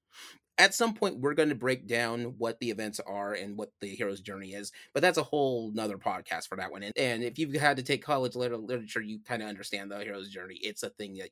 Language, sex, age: English, male, 30-49